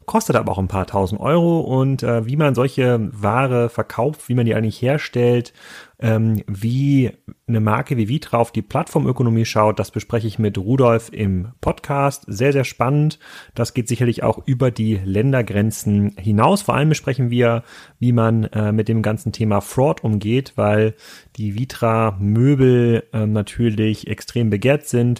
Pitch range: 105-130 Hz